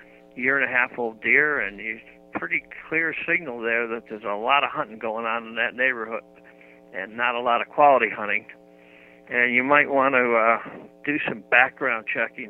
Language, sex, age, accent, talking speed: English, male, 60-79, American, 190 wpm